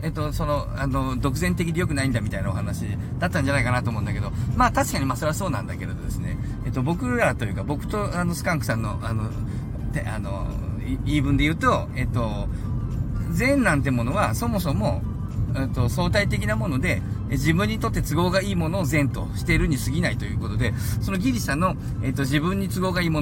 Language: Japanese